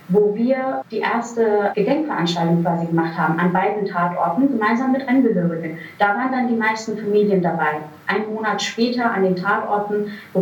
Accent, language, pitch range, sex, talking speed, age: German, German, 185-230 Hz, female, 160 wpm, 30-49